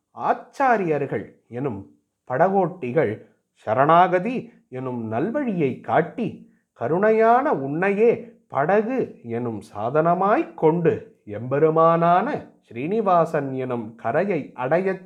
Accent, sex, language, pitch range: native, male, Tamil, 135-215 Hz